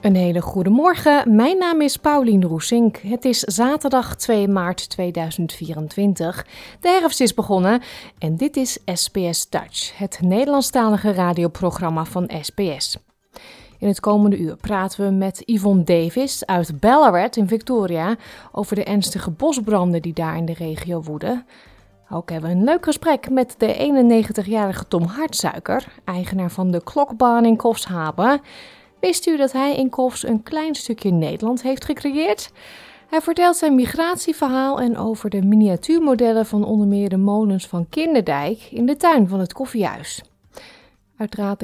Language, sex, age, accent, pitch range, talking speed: Dutch, female, 20-39, Dutch, 180-260 Hz, 150 wpm